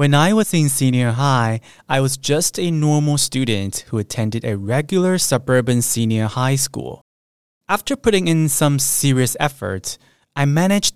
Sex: male